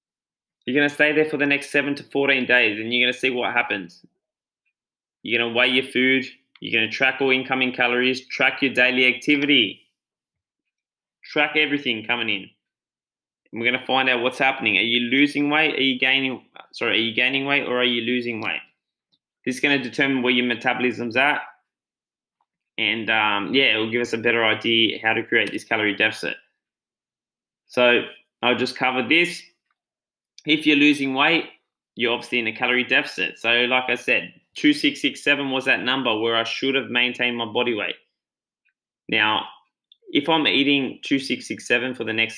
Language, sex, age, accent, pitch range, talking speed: English, male, 10-29, Australian, 115-140 Hz, 190 wpm